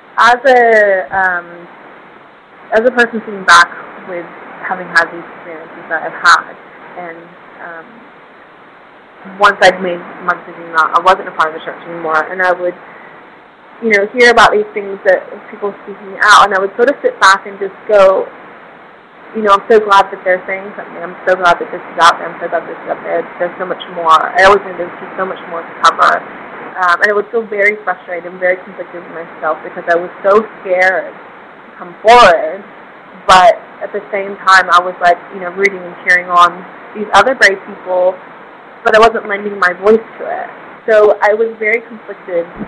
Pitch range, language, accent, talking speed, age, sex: 175-205 Hz, English, American, 200 wpm, 20-39, female